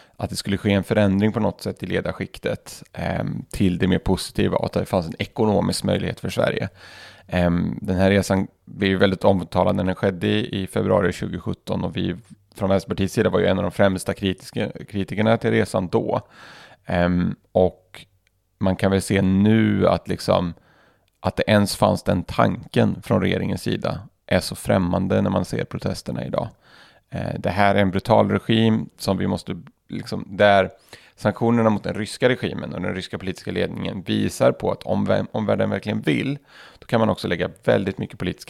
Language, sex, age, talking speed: Swedish, male, 30-49, 180 wpm